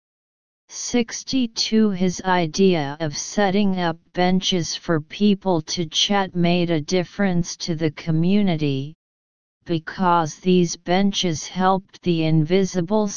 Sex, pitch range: female, 160-195 Hz